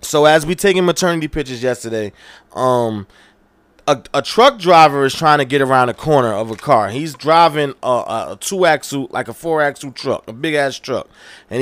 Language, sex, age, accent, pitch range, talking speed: English, male, 20-39, American, 135-185 Hz, 180 wpm